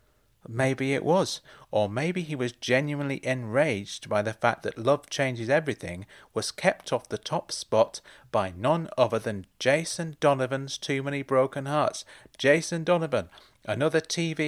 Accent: British